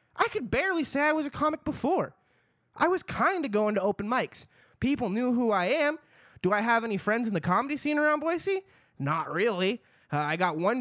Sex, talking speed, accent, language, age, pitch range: male, 215 wpm, American, English, 20-39, 150-225 Hz